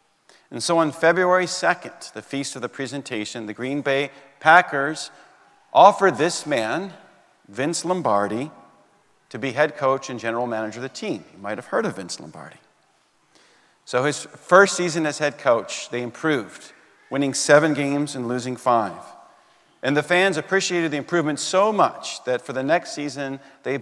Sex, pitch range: male, 130-160 Hz